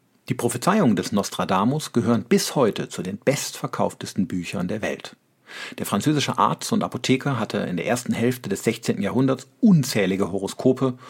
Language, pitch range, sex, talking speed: German, 110-145 Hz, male, 150 wpm